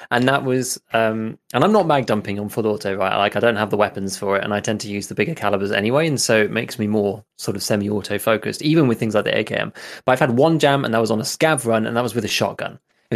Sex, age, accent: male, 20-39, British